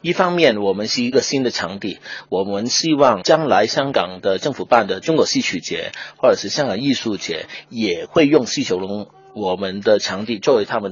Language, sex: Chinese, male